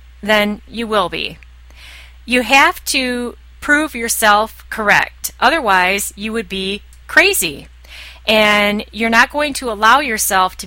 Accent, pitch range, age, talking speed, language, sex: American, 190-240 Hz, 30-49, 130 wpm, English, female